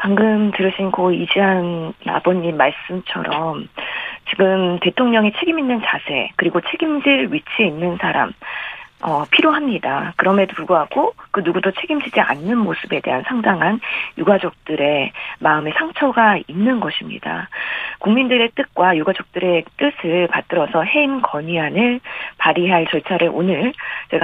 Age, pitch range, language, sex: 40-59, 175-245 Hz, Korean, female